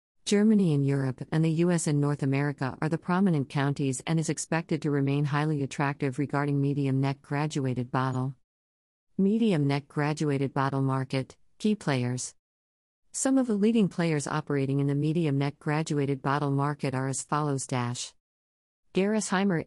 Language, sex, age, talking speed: English, female, 50-69, 140 wpm